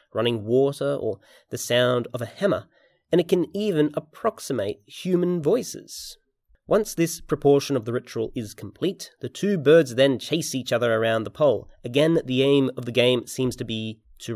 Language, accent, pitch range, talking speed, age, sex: English, Australian, 115-155 Hz, 180 wpm, 30-49, male